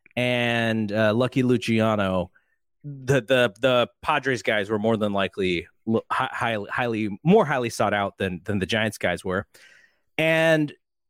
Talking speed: 140 wpm